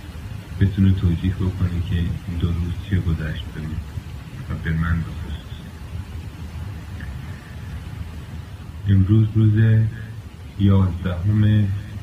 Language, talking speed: Persian, 90 wpm